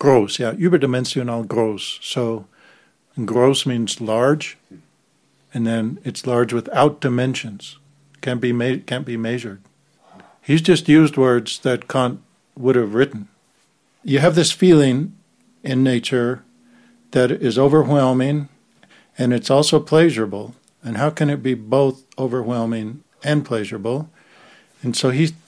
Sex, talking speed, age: male, 125 wpm, 60-79